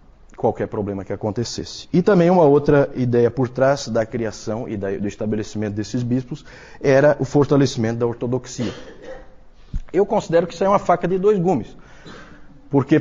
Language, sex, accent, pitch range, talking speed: Portuguese, male, Brazilian, 120-170 Hz, 155 wpm